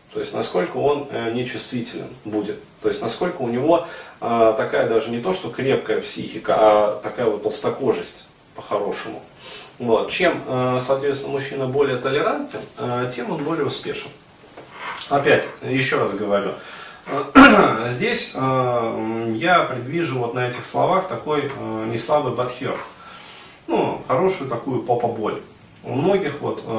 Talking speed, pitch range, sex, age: 120 wpm, 110-145 Hz, male, 30-49